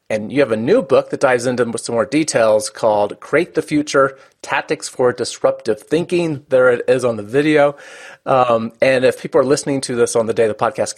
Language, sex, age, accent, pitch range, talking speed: English, male, 30-49, American, 115-165 Hz, 215 wpm